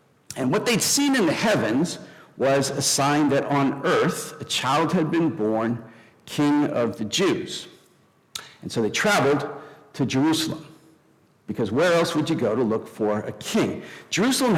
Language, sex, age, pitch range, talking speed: English, male, 50-69, 130-165 Hz, 165 wpm